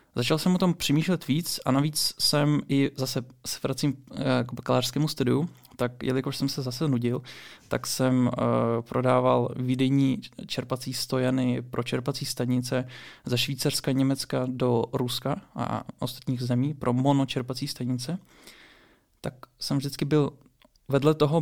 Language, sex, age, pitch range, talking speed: Czech, male, 20-39, 125-140 Hz, 135 wpm